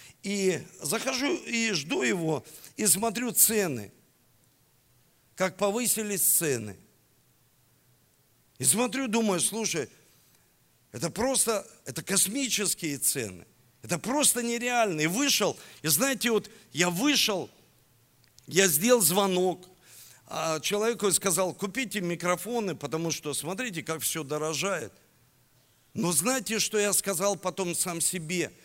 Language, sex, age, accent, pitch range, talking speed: Russian, male, 50-69, native, 165-245 Hz, 110 wpm